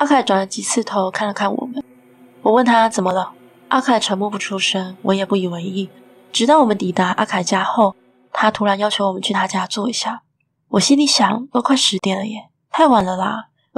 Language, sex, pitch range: Chinese, female, 195-225 Hz